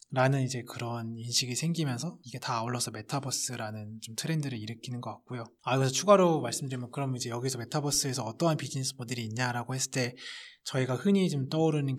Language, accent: Korean, native